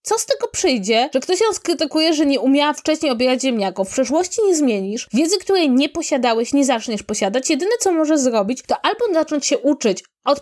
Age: 20-39